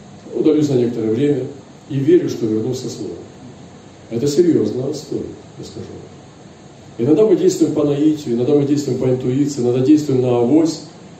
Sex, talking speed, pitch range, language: male, 150 wpm, 115-145 Hz, Russian